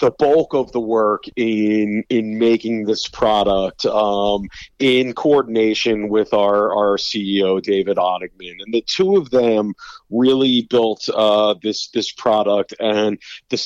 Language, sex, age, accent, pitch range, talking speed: English, male, 40-59, American, 110-135 Hz, 140 wpm